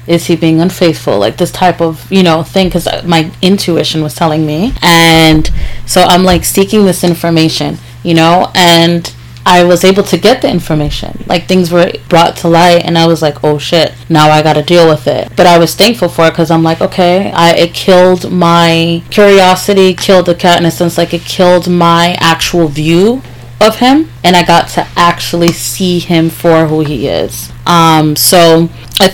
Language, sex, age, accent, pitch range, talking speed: English, female, 30-49, American, 155-180 Hz, 200 wpm